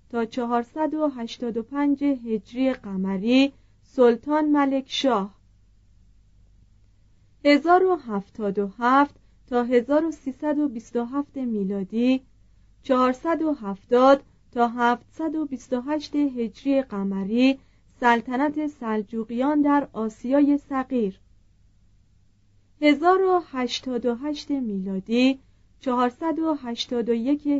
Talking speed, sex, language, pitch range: 50 wpm, female, Persian, 210-285 Hz